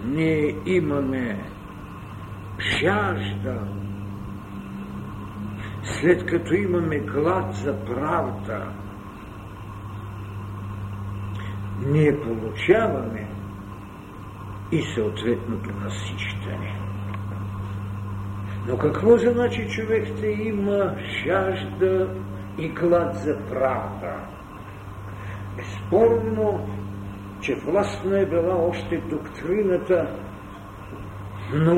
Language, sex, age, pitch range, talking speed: Bulgarian, male, 60-79, 100-120 Hz, 60 wpm